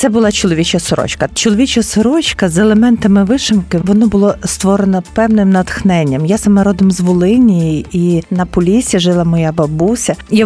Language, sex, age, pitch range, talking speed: Ukrainian, female, 40-59, 185-225 Hz, 150 wpm